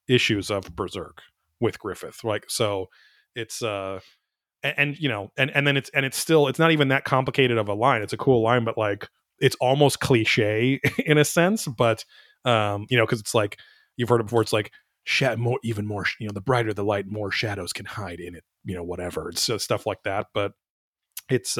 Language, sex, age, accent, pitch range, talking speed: English, male, 30-49, American, 105-135 Hz, 215 wpm